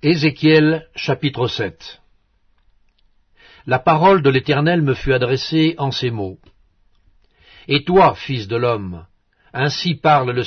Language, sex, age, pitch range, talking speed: English, male, 60-79, 105-150 Hz, 120 wpm